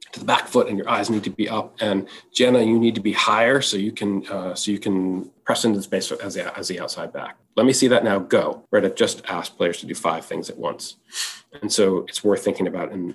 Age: 40-59